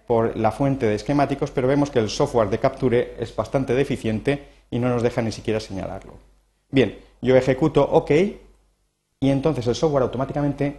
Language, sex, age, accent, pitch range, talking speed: Spanish, male, 40-59, Spanish, 115-155 Hz, 170 wpm